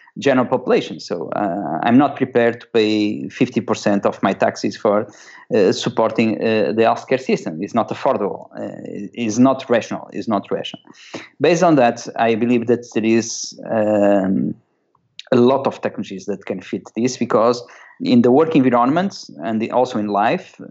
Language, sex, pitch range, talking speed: English, male, 110-125 Hz, 160 wpm